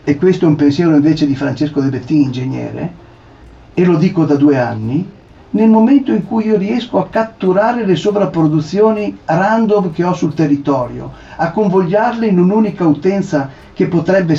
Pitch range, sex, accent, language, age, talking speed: 145-190 Hz, male, native, Italian, 50-69, 165 wpm